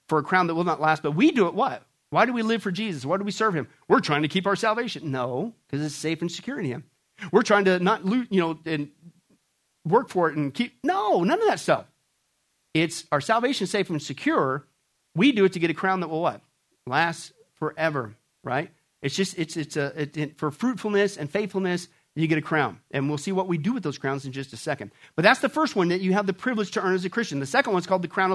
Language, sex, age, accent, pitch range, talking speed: English, male, 40-59, American, 150-200 Hz, 265 wpm